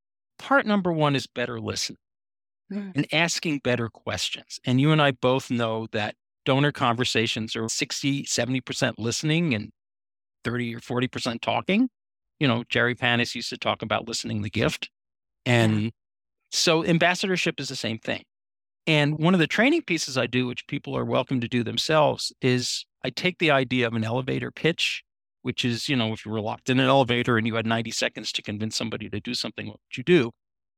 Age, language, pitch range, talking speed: 50-69, English, 115-155 Hz, 185 wpm